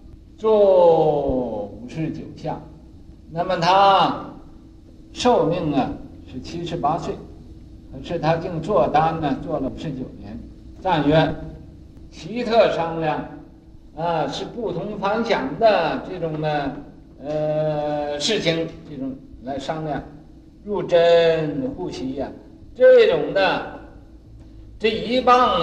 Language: Chinese